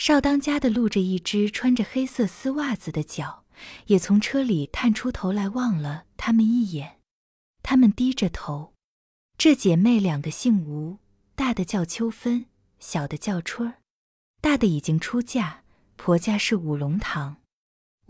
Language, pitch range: Chinese, 170-235 Hz